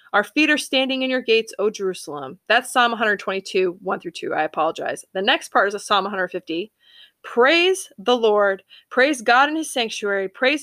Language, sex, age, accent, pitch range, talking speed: English, female, 20-39, American, 200-260 Hz, 185 wpm